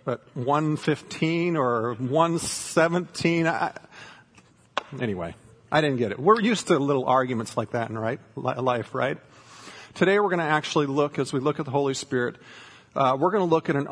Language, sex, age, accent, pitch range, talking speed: English, male, 40-59, American, 120-155 Hz, 175 wpm